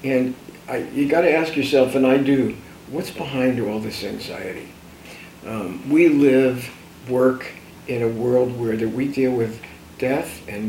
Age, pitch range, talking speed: 60-79, 115-140 Hz, 150 wpm